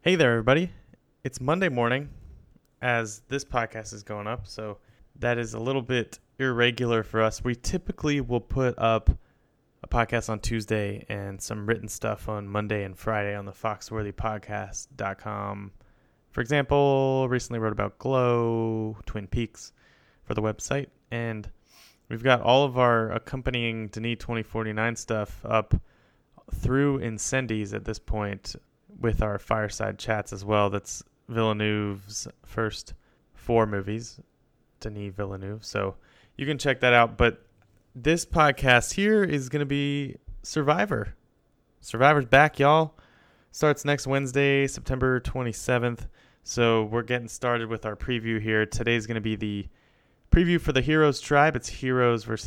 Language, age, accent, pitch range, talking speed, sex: English, 20-39, American, 105-130 Hz, 145 wpm, male